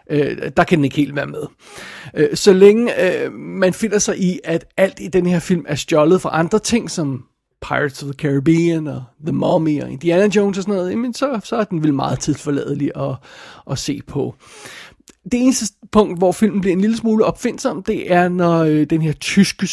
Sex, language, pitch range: male, Danish, 145-185 Hz